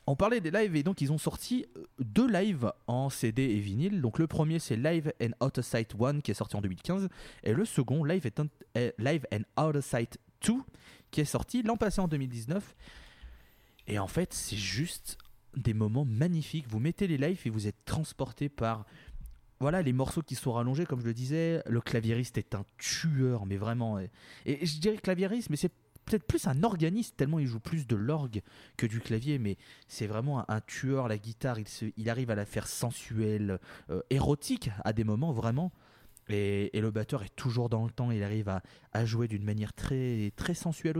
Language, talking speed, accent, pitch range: French, 205 wpm, French, 115-155 Hz